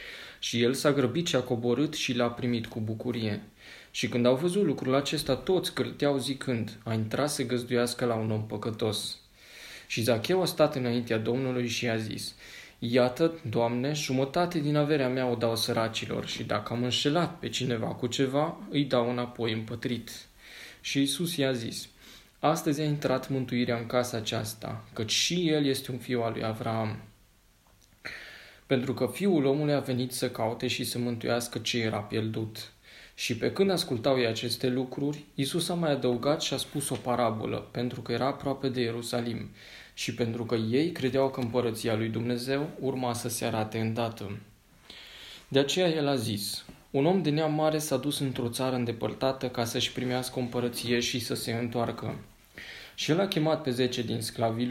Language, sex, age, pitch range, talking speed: Romanian, male, 20-39, 115-135 Hz, 180 wpm